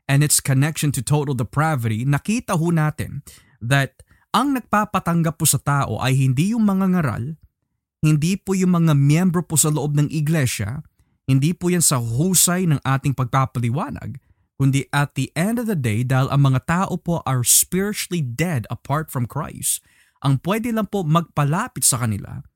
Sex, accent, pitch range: male, native, 130-165 Hz